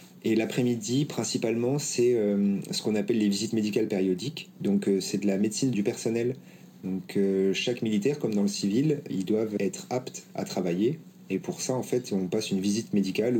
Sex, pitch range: male, 95-120 Hz